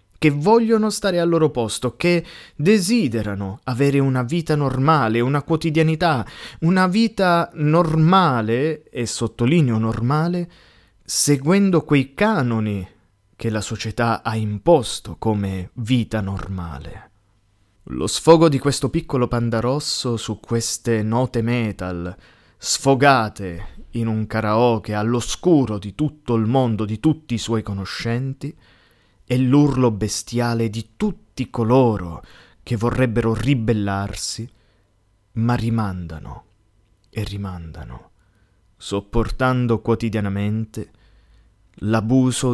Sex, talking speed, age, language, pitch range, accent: male, 100 wpm, 20-39, Italian, 105-135 Hz, native